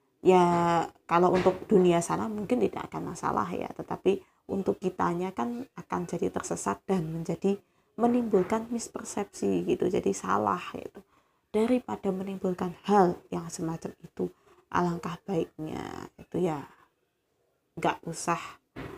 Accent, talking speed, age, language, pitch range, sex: native, 115 wpm, 20-39, Indonesian, 170-215 Hz, female